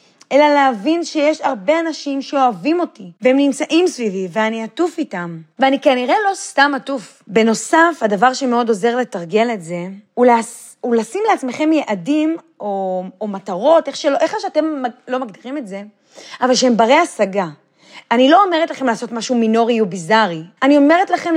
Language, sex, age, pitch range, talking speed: Hebrew, female, 30-49, 225-290 Hz, 160 wpm